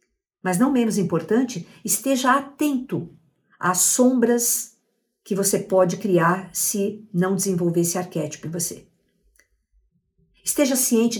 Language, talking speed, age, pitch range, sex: Portuguese, 115 wpm, 50-69, 165-215 Hz, female